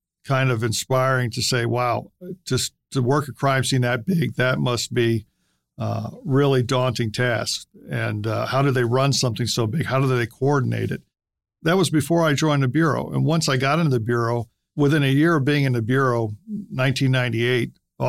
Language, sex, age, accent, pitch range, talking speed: English, male, 50-69, American, 120-145 Hz, 190 wpm